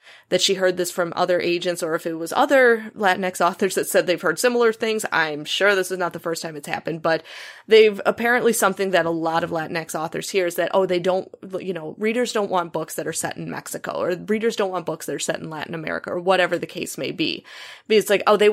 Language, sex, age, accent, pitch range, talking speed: English, female, 20-39, American, 175-210 Hz, 255 wpm